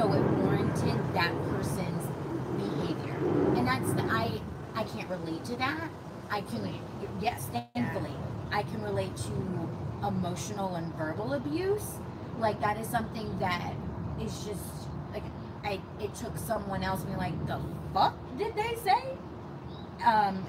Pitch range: 170-210 Hz